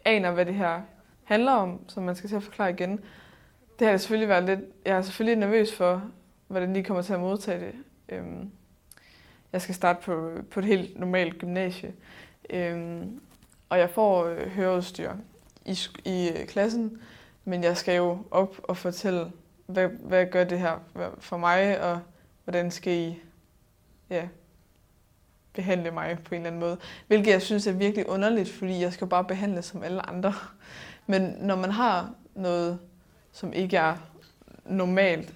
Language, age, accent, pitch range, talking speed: Danish, 20-39, native, 175-200 Hz, 155 wpm